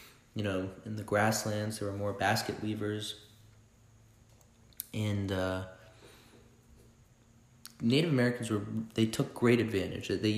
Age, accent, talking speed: 30-49, American, 120 wpm